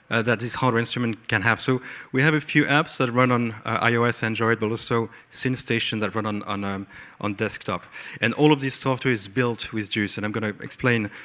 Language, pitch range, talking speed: English, 105-130 Hz, 225 wpm